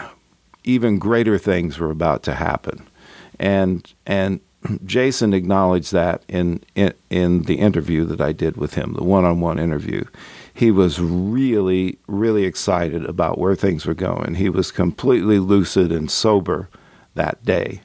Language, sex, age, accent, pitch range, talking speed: English, male, 50-69, American, 85-110 Hz, 145 wpm